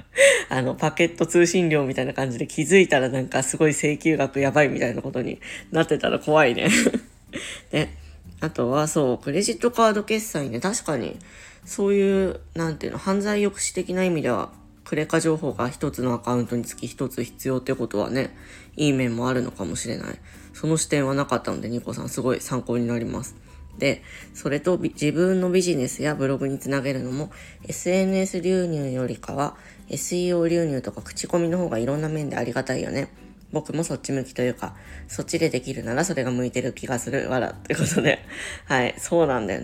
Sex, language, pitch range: female, Japanese, 125-170 Hz